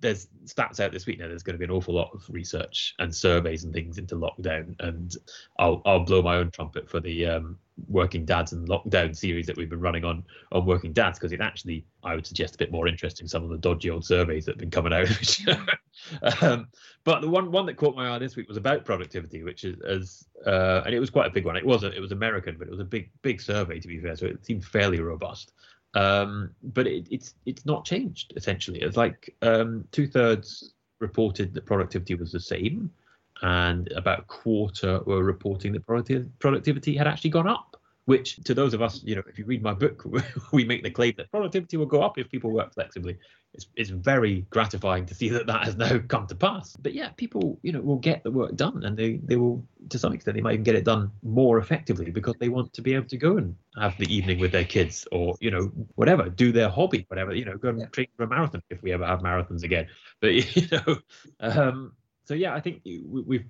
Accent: British